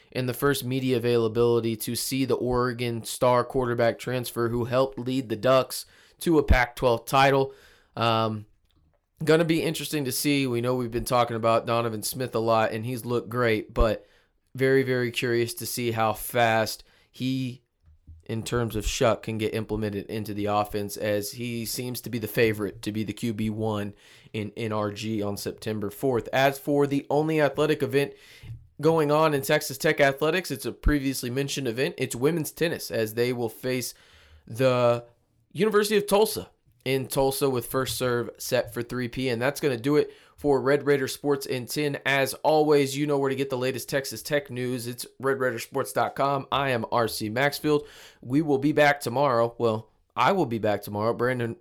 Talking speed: 180 wpm